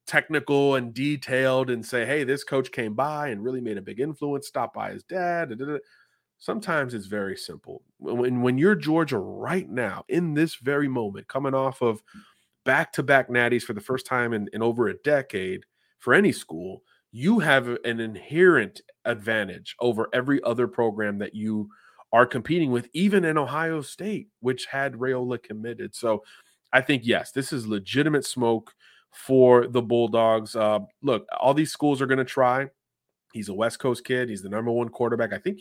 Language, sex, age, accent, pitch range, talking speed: English, male, 30-49, American, 115-140 Hz, 180 wpm